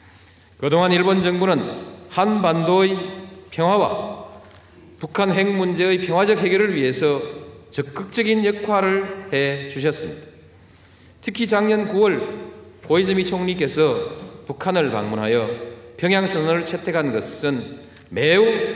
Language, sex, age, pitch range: Korean, male, 40-59, 130-195 Hz